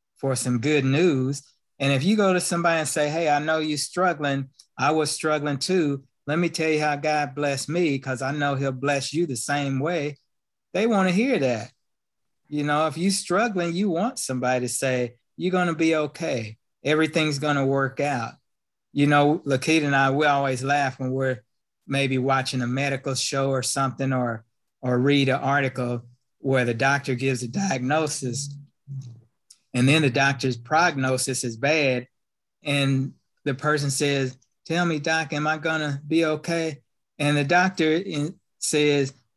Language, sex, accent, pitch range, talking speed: English, male, American, 135-160 Hz, 175 wpm